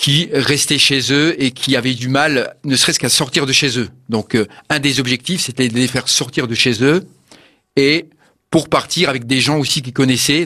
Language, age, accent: French, 40-59, French